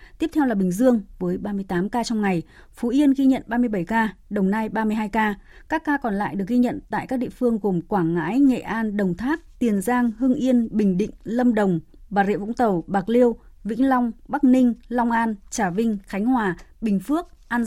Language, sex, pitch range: Vietnamese, female, 190-245 Hz